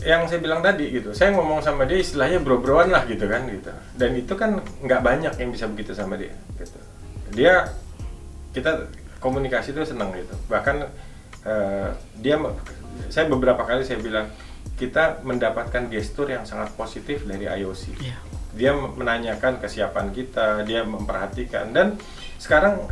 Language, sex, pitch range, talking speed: Indonesian, male, 95-135 Hz, 145 wpm